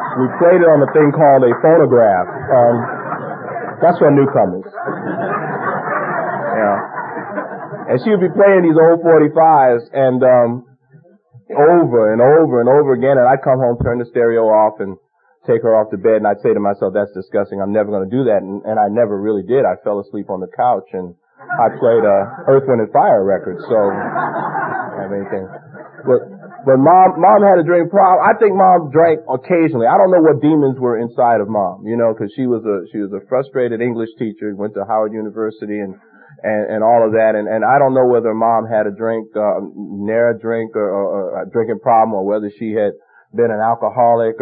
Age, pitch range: 40-59, 105-145 Hz